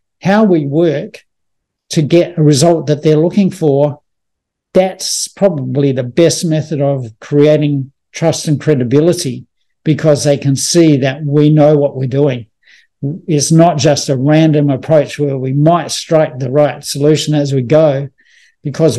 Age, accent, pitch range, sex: 60-79, Australian, 145-170 Hz, male